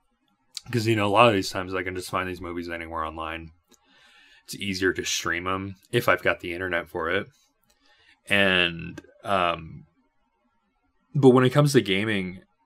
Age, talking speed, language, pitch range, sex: 20-39, 170 wpm, English, 95-115 Hz, male